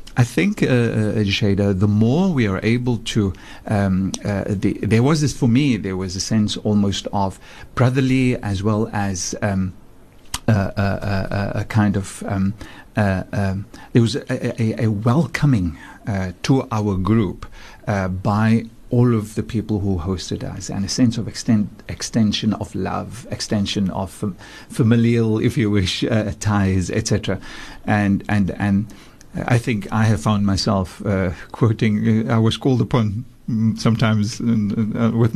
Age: 50-69